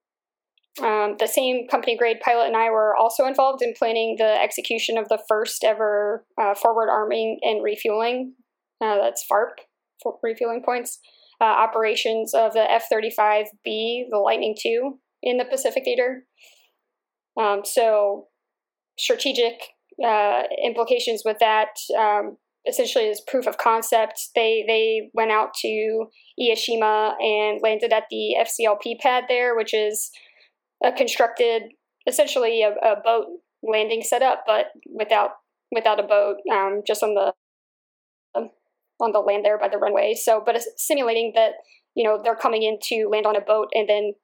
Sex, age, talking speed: female, 10-29, 155 wpm